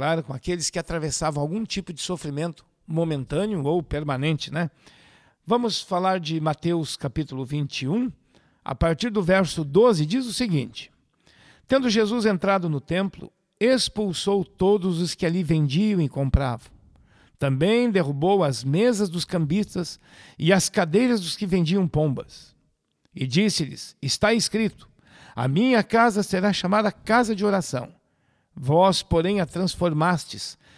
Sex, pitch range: male, 160-215 Hz